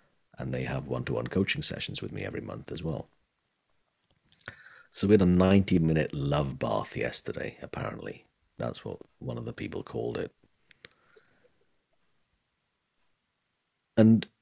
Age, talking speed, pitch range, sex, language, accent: 50-69, 125 wpm, 70-95 Hz, male, English, British